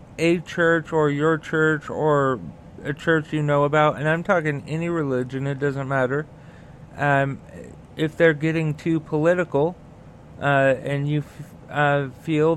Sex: male